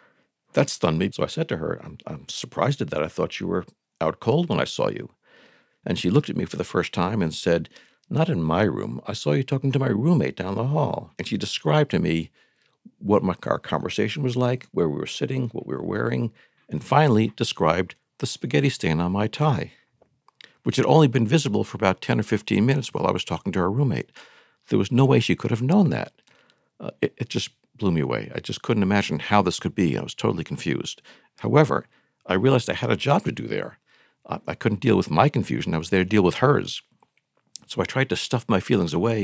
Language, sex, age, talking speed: English, male, 60-79, 235 wpm